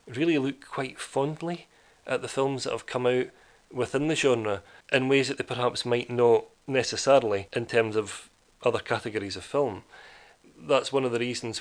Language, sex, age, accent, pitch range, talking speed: English, male, 30-49, British, 110-135 Hz, 175 wpm